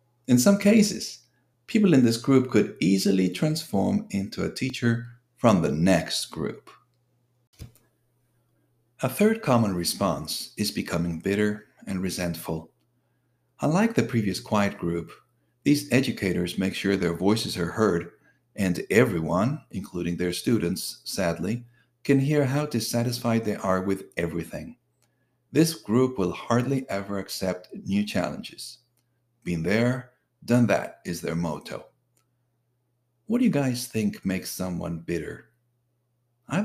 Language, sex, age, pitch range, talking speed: English, male, 50-69, 95-125 Hz, 125 wpm